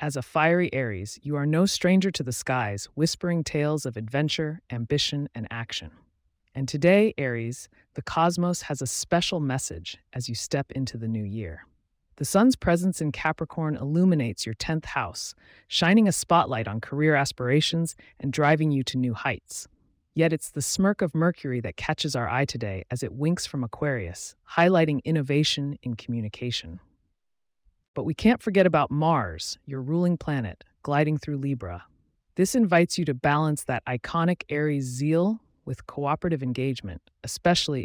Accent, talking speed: American, 160 wpm